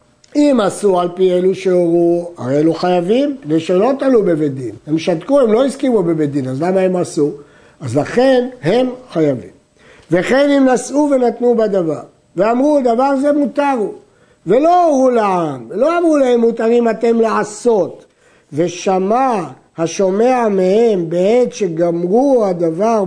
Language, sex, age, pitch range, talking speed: Hebrew, male, 60-79, 175-245 Hz, 140 wpm